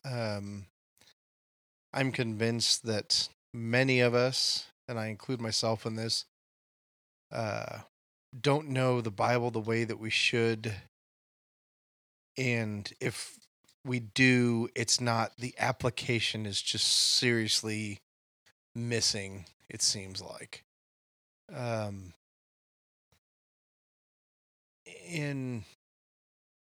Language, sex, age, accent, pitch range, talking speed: English, male, 30-49, American, 110-125 Hz, 90 wpm